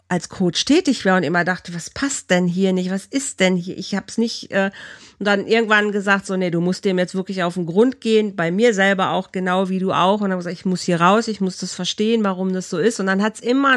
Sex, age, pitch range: female, 40-59, 180-225 Hz